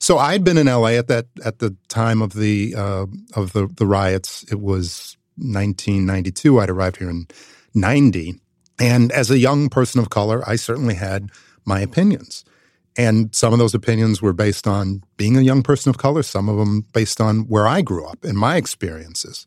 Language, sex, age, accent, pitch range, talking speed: English, male, 50-69, American, 100-130 Hz, 195 wpm